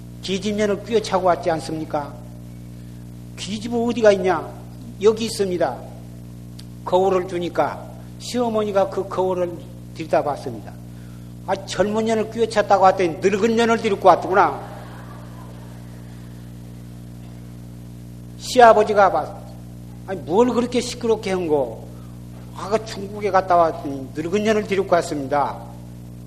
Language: Korean